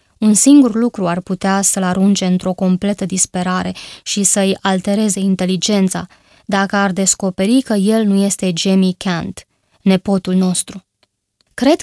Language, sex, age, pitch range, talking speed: Romanian, female, 20-39, 185-210 Hz, 130 wpm